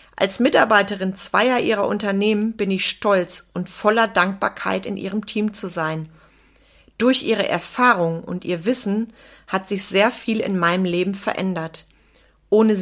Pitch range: 180-220 Hz